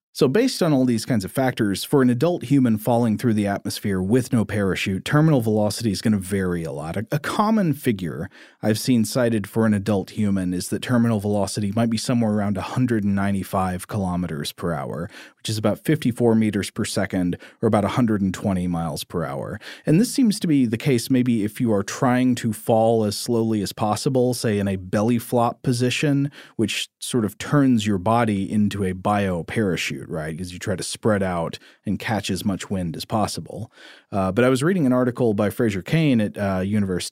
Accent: American